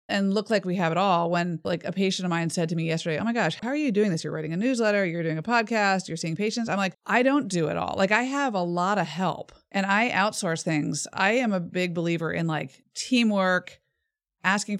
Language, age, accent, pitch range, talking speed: English, 30-49, American, 165-205 Hz, 255 wpm